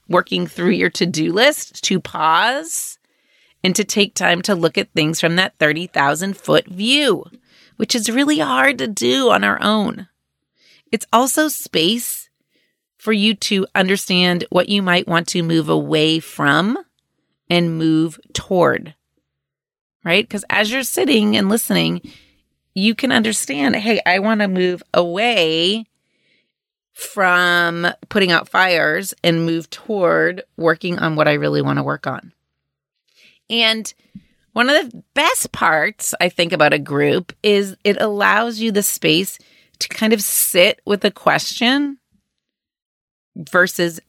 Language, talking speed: English, 140 wpm